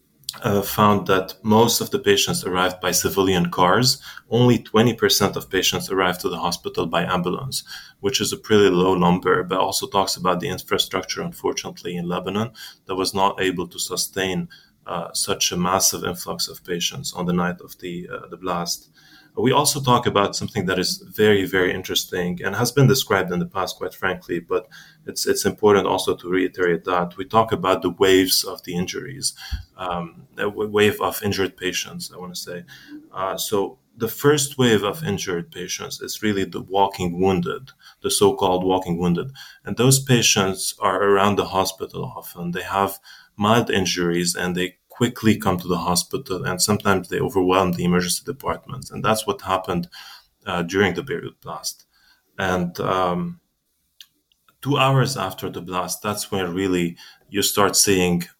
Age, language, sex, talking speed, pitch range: 20-39, English, male, 170 wpm, 90-110 Hz